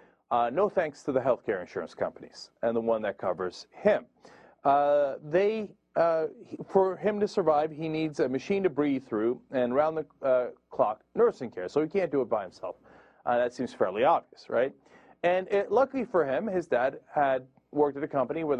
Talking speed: 195 wpm